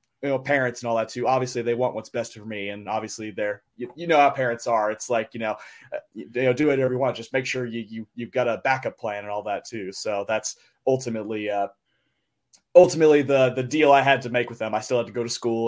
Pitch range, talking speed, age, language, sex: 115-135 Hz, 255 wpm, 20-39, English, male